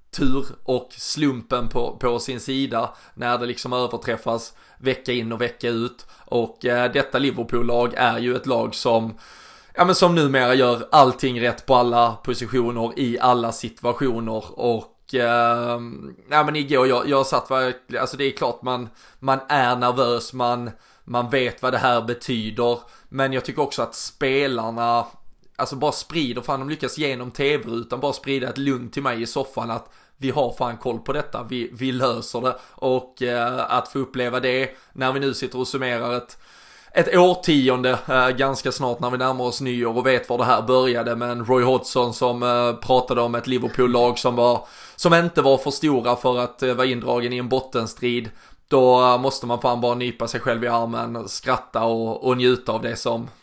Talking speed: 185 wpm